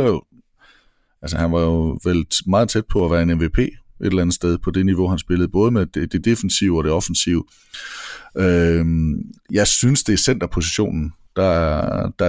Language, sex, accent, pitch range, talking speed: English, male, Danish, 85-105 Hz, 165 wpm